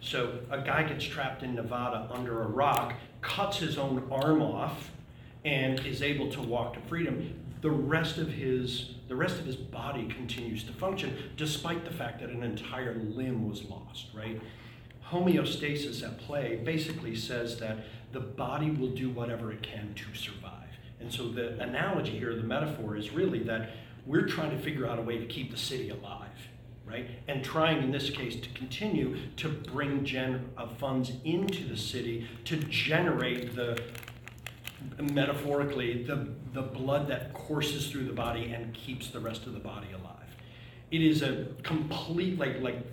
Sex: male